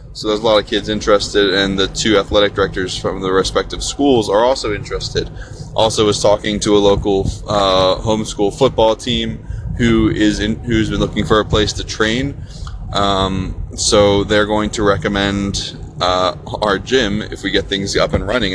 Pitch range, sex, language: 100-115 Hz, male, English